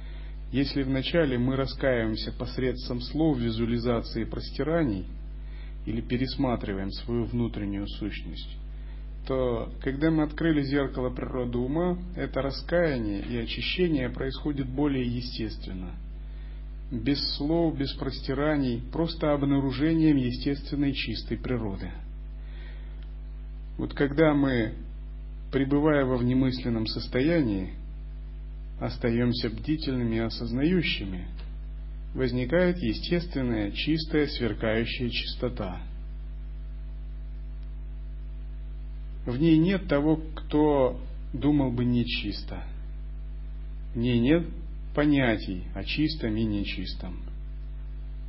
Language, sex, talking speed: Russian, male, 85 wpm